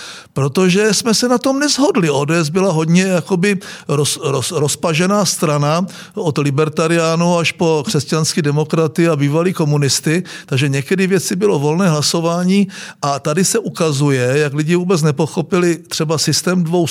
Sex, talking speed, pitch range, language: male, 140 wpm, 150-195 Hz, Czech